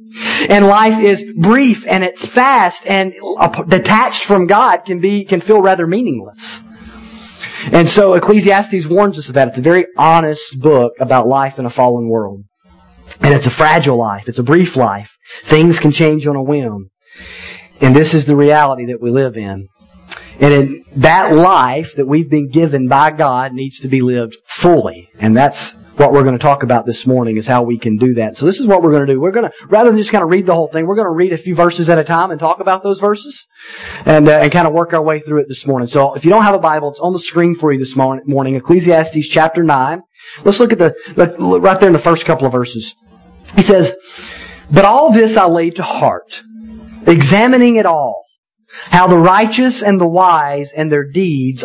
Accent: American